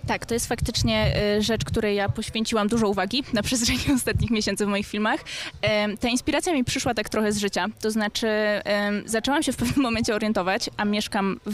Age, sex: 20-39, female